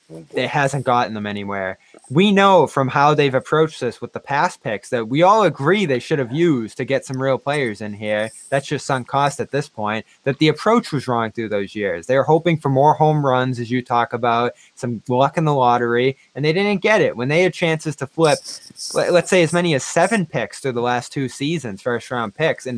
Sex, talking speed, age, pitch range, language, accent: male, 235 wpm, 20-39, 130-175 Hz, English, American